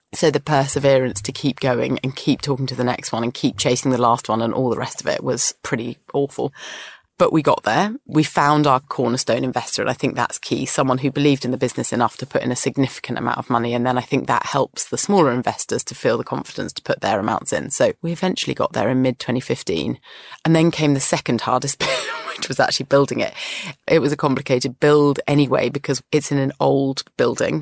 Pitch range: 130-145 Hz